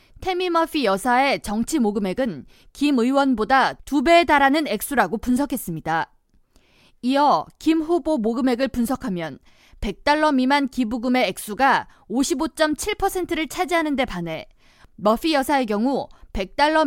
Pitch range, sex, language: 225-305 Hz, female, Korean